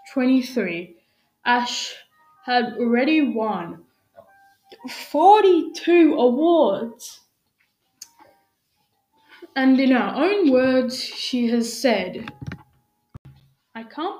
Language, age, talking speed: English, 10-29, 70 wpm